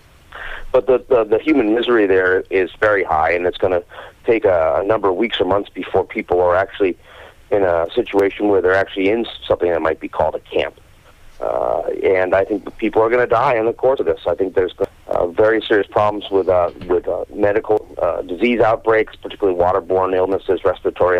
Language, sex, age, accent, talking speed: English, male, 40-59, American, 205 wpm